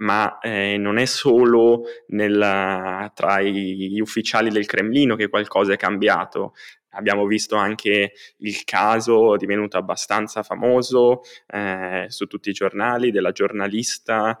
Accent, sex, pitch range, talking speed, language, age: native, male, 100-120 Hz, 120 wpm, Italian, 10-29